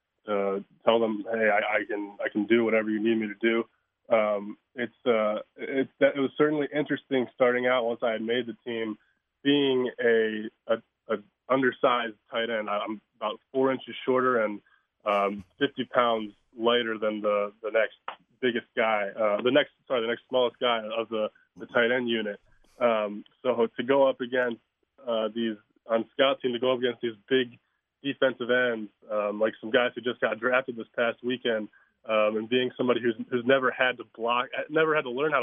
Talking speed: 195 wpm